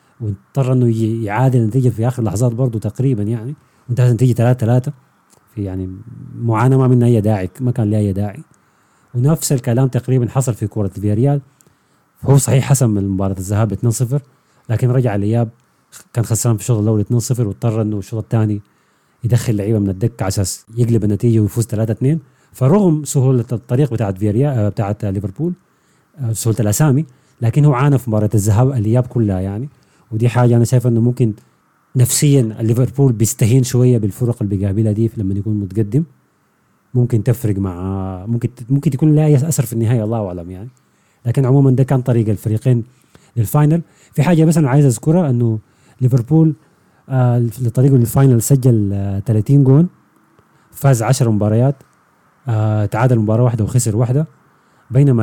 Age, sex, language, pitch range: 30-49, male, Arabic, 110-135 Hz